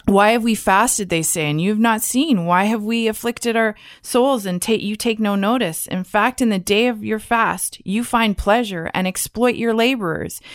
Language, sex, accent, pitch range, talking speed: English, female, American, 180-230 Hz, 215 wpm